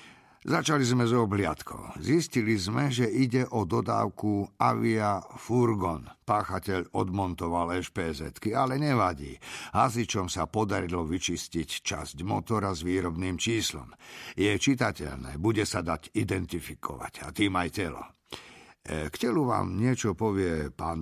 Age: 50-69